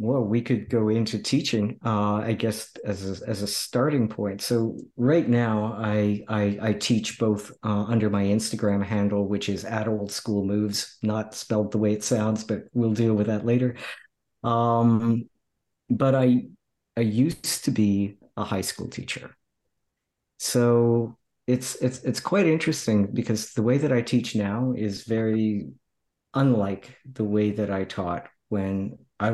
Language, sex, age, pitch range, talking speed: English, male, 50-69, 105-125 Hz, 165 wpm